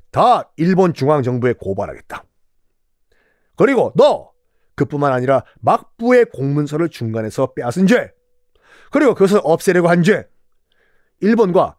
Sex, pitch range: male, 125-205 Hz